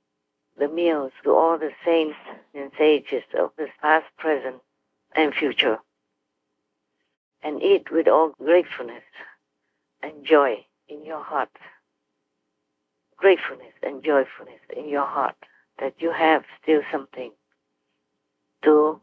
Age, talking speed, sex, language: 60-79, 115 wpm, female, English